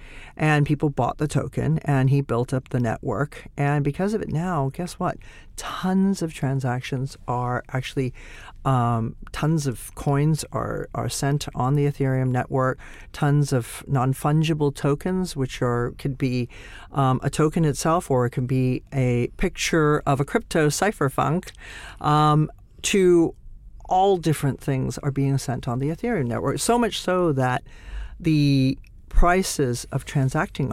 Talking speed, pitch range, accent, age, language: 150 wpm, 125-150 Hz, American, 50-69, English